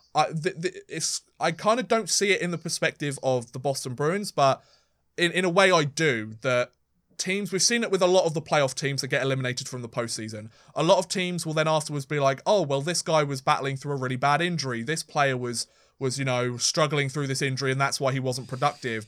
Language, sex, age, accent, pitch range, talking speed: English, male, 20-39, British, 130-165 Hz, 245 wpm